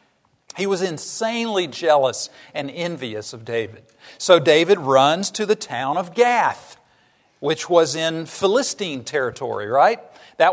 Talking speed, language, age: 130 wpm, English, 50-69